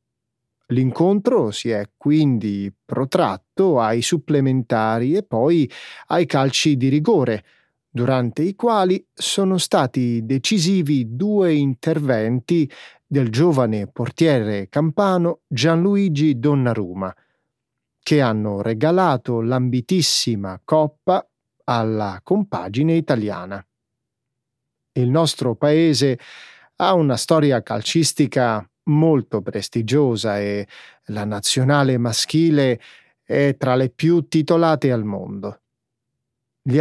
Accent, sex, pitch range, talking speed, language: native, male, 120-160 Hz, 90 wpm, Italian